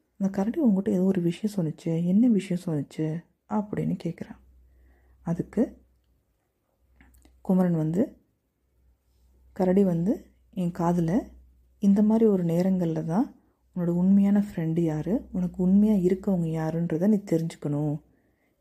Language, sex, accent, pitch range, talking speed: Tamil, female, native, 160-205 Hz, 115 wpm